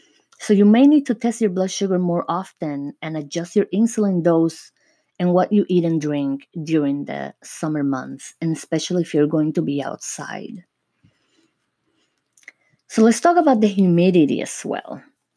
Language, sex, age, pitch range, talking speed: English, female, 20-39, 160-220 Hz, 165 wpm